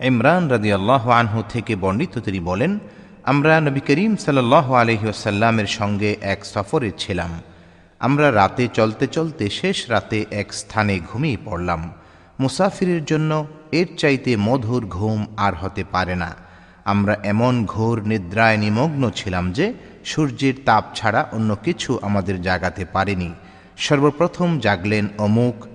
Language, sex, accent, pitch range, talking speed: Bengali, male, native, 100-145 Hz, 125 wpm